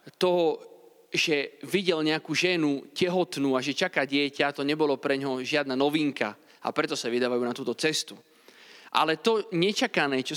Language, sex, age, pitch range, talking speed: Slovak, male, 30-49, 145-200 Hz, 155 wpm